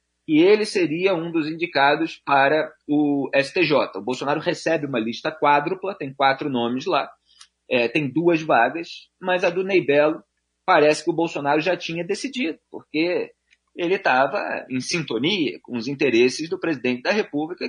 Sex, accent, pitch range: male, Brazilian, 120-175 Hz